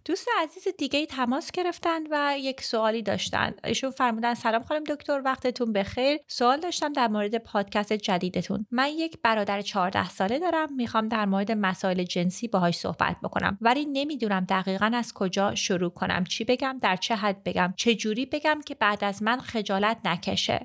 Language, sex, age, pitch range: Persian, female, 30-49, 200-265 Hz